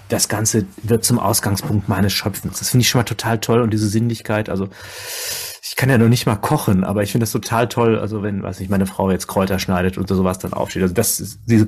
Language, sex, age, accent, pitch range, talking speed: German, male, 30-49, German, 105-120 Hz, 245 wpm